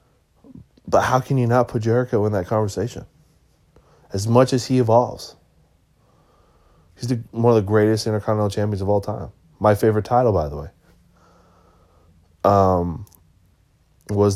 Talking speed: 140 wpm